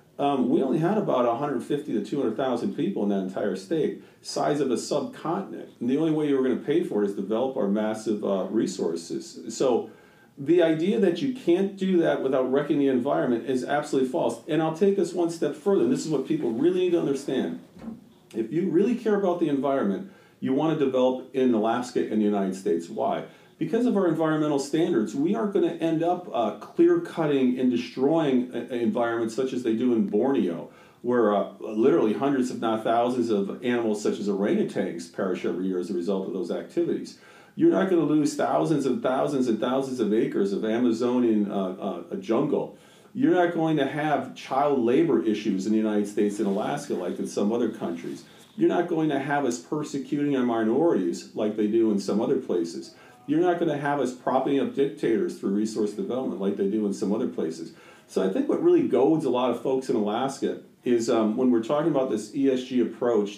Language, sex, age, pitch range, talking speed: English, male, 40-59, 115-165 Hz, 210 wpm